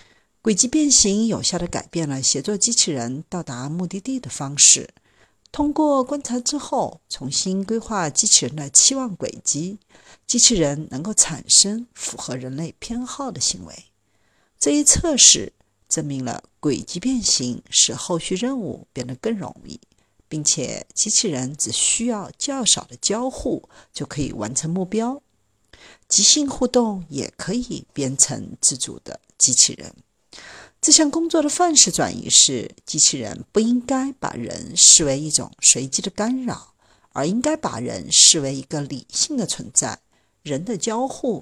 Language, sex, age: Chinese, female, 50-69